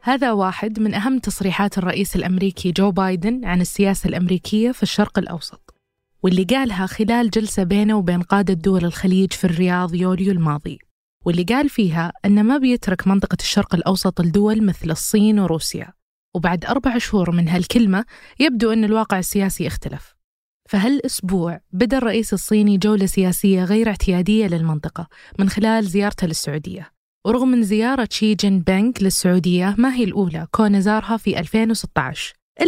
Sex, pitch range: female, 185-225 Hz